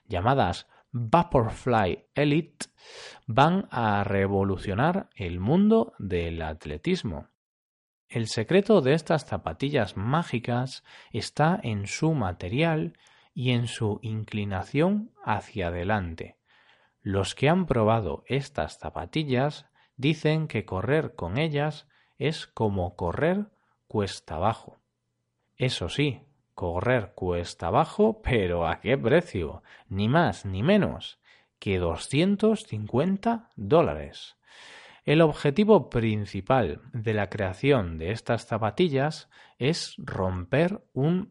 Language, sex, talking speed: Spanish, male, 100 wpm